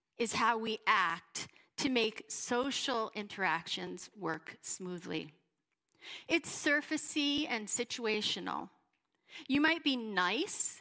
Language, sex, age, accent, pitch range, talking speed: English, female, 40-59, American, 205-290 Hz, 100 wpm